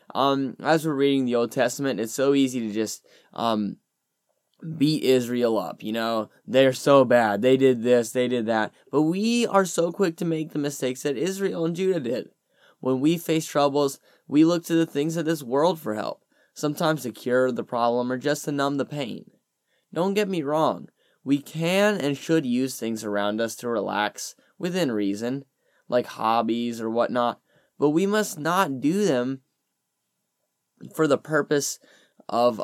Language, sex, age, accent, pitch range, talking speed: English, male, 10-29, American, 125-165 Hz, 175 wpm